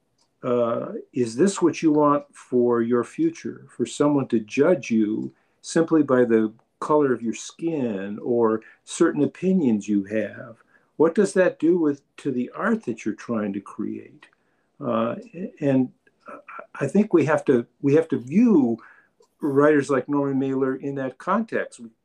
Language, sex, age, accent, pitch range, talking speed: English, male, 50-69, American, 120-170 Hz, 155 wpm